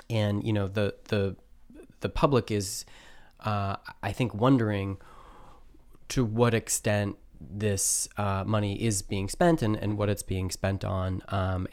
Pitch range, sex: 95-105 Hz, male